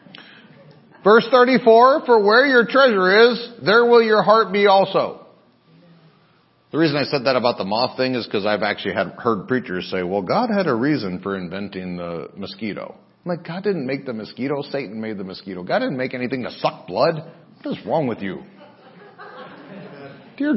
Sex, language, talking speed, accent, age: male, English, 180 wpm, American, 50-69